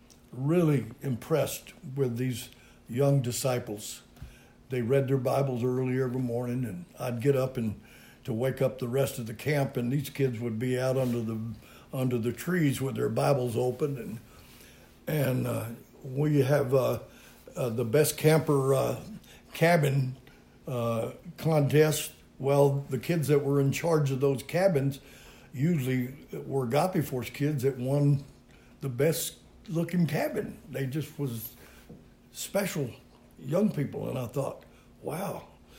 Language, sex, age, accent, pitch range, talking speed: English, male, 60-79, American, 125-150 Hz, 145 wpm